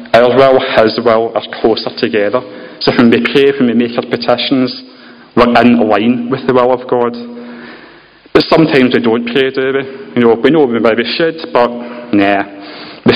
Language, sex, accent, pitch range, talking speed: English, male, British, 115-130 Hz, 185 wpm